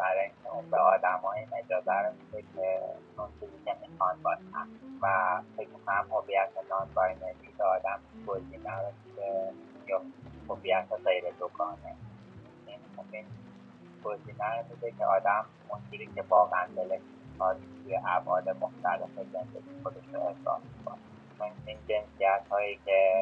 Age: 20-39